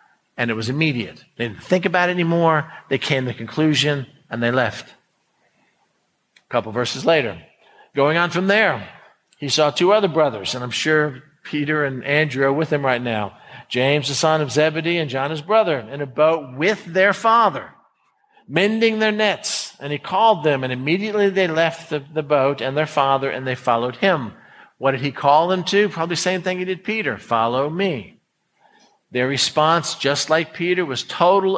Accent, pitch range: American, 130-170 Hz